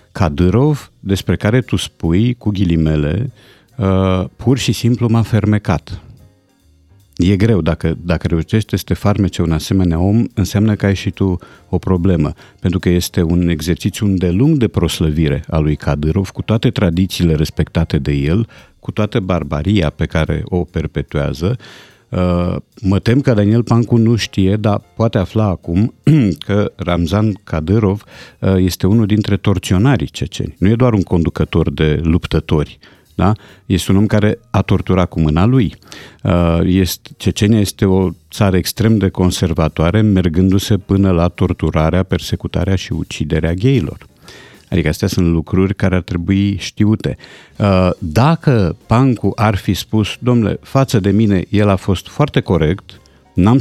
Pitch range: 90-115 Hz